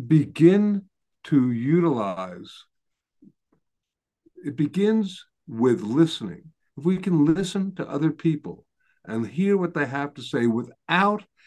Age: 60-79